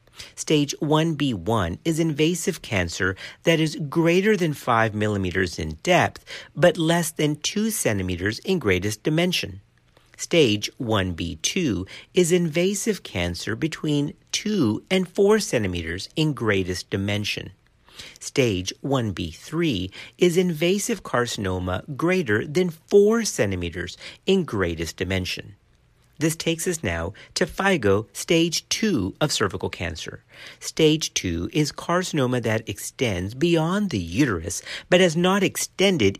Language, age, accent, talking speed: English, 50-69, American, 115 wpm